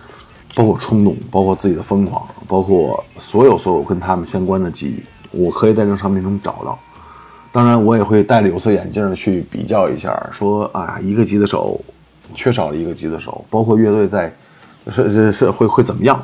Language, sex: Chinese, male